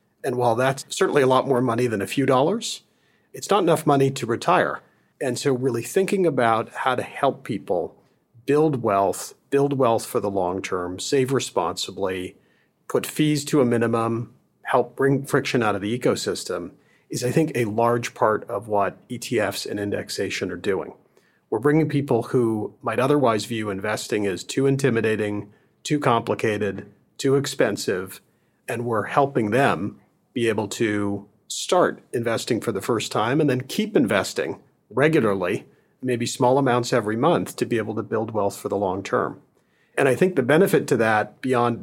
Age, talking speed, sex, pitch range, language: 40-59, 170 wpm, male, 110-135 Hz, English